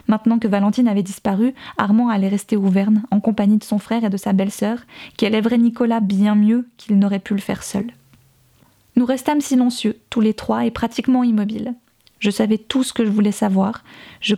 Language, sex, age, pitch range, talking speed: French, female, 20-39, 205-235 Hz, 195 wpm